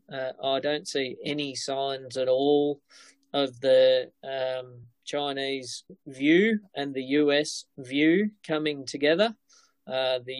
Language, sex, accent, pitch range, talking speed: English, male, Australian, 130-145 Hz, 120 wpm